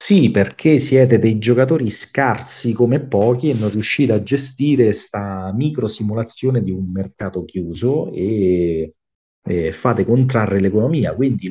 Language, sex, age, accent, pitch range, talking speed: Italian, male, 40-59, native, 95-125 Hz, 130 wpm